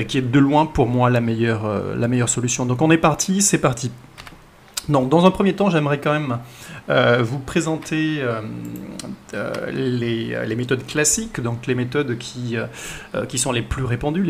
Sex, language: male, French